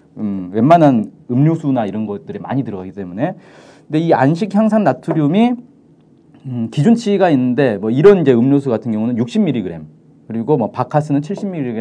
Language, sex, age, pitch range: Korean, male, 40-59, 125-200 Hz